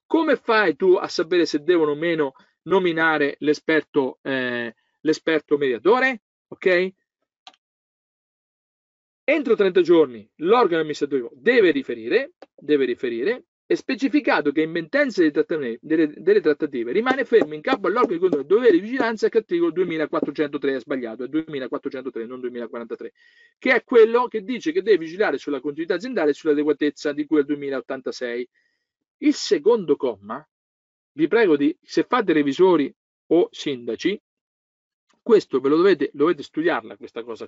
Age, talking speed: 40-59, 140 wpm